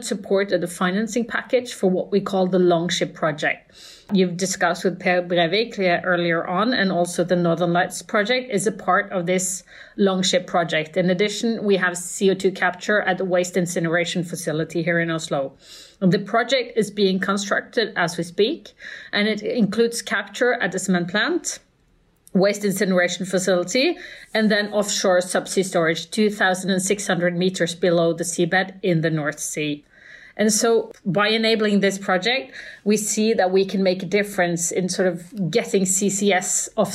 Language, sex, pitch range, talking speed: English, female, 180-210 Hz, 160 wpm